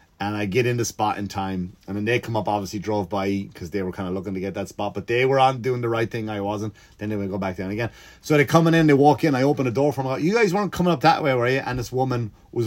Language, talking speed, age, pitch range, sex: English, 335 wpm, 30-49, 100-130 Hz, male